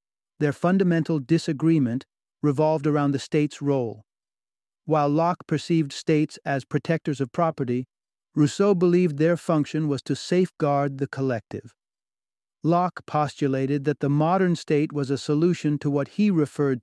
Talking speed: 135 wpm